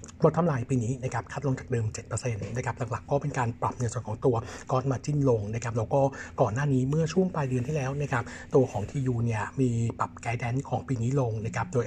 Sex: male